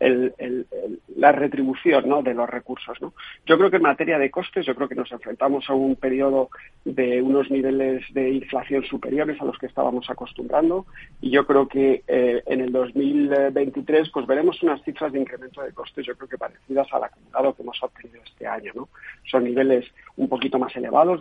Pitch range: 125-140 Hz